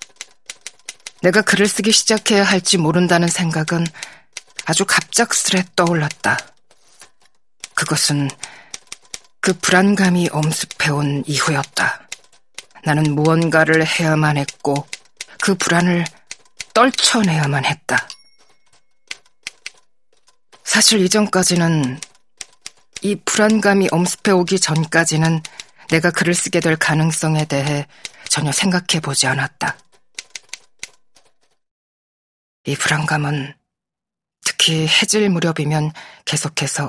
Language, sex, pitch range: Korean, female, 155-195 Hz